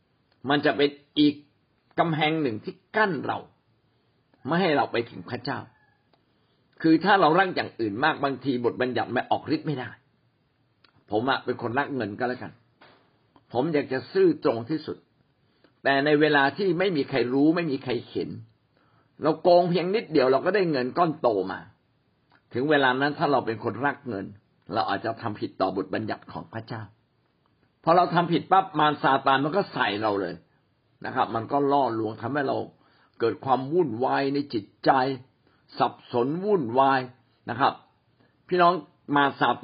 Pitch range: 120-155 Hz